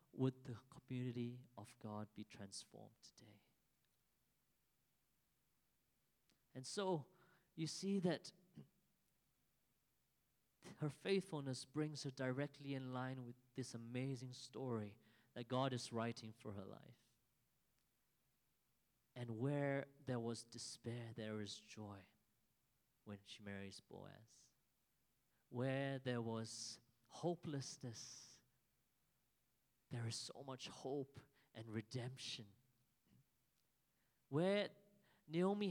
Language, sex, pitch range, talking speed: English, male, 120-145 Hz, 95 wpm